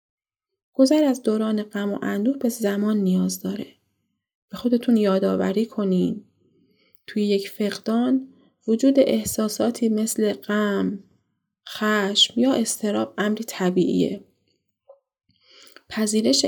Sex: female